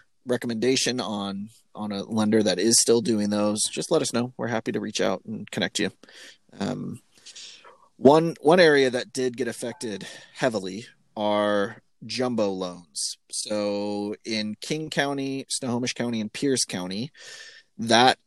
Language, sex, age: English, male, 30-49